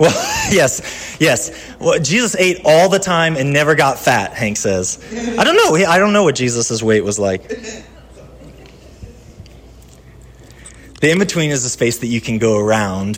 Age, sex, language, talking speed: 30-49, male, English, 160 wpm